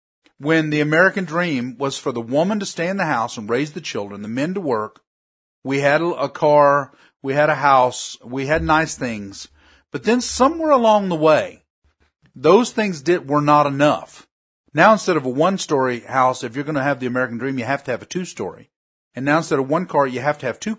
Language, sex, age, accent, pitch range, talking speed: English, male, 40-59, American, 130-170 Hz, 225 wpm